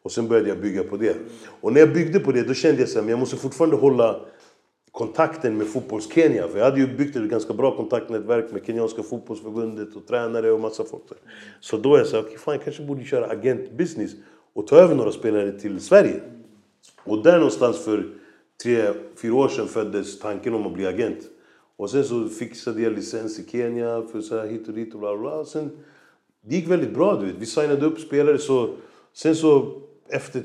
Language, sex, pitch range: Swedish, male, 110-155 Hz